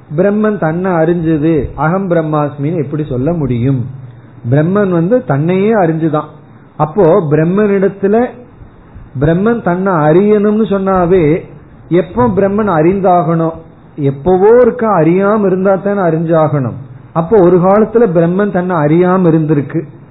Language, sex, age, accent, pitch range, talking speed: Tamil, male, 40-59, native, 140-185 Hz, 100 wpm